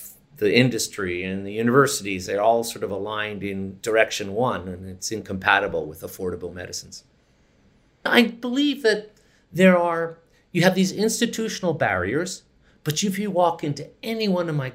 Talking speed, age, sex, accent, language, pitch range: 155 wpm, 50-69, male, American, English, 115-170 Hz